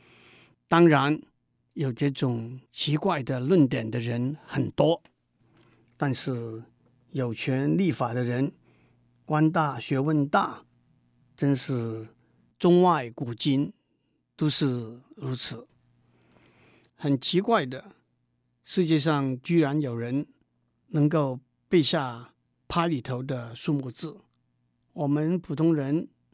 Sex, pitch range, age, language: male, 120-155 Hz, 50-69, Chinese